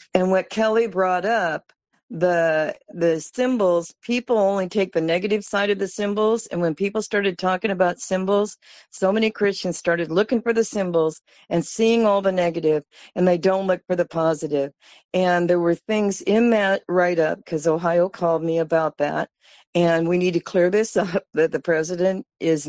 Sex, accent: female, American